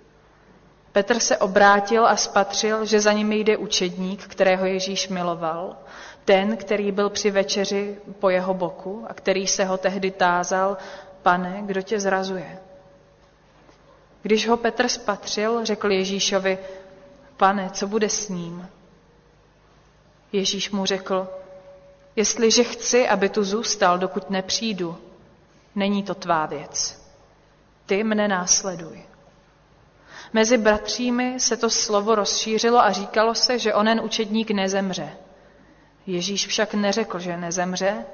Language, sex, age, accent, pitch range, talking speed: Czech, female, 30-49, native, 185-215 Hz, 120 wpm